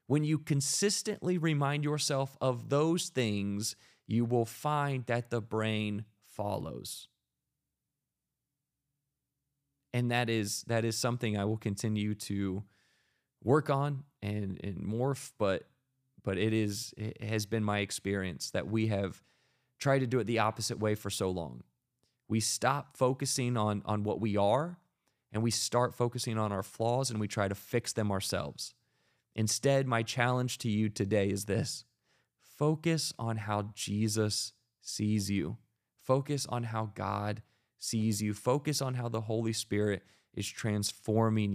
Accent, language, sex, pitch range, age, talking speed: American, English, male, 105-130 Hz, 20-39, 145 wpm